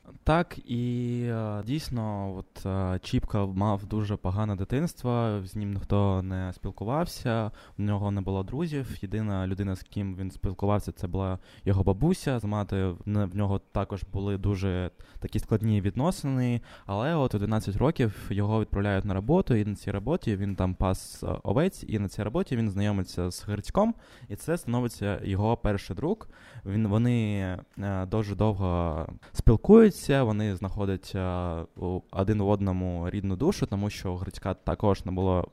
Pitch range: 95-115 Hz